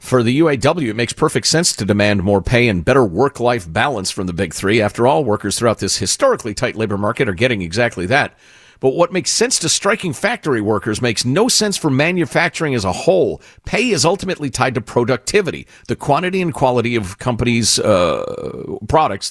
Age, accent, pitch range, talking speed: 50-69, American, 100-145 Hz, 195 wpm